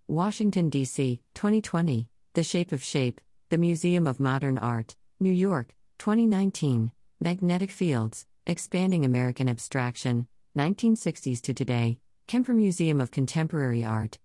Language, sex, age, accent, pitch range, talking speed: English, female, 50-69, American, 125-175 Hz, 120 wpm